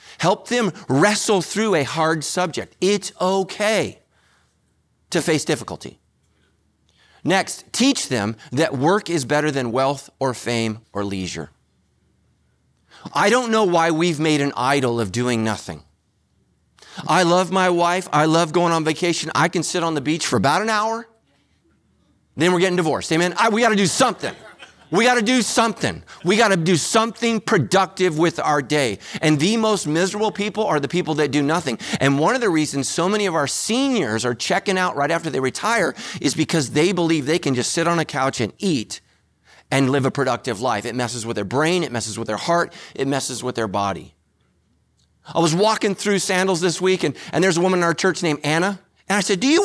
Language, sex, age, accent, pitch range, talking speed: English, male, 40-59, American, 140-190 Hz, 190 wpm